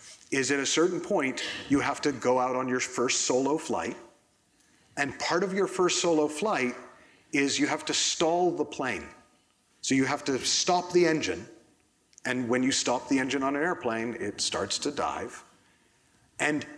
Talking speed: 180 wpm